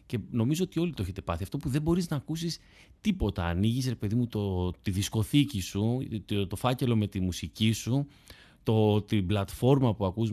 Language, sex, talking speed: Greek, male, 200 wpm